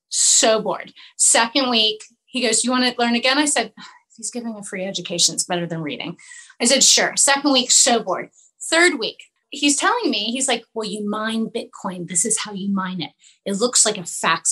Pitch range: 210-270 Hz